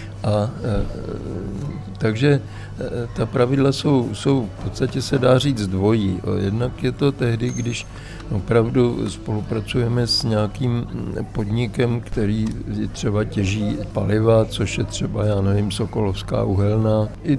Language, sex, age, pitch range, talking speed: Czech, male, 60-79, 105-120 Hz, 115 wpm